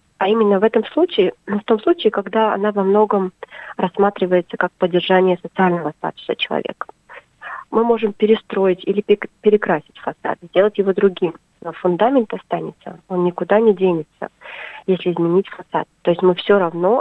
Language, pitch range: Russian, 180-210 Hz